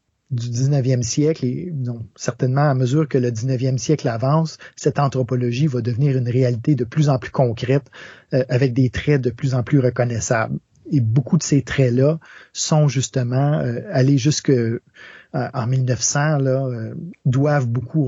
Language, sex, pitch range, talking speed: French, male, 125-150 Hz, 165 wpm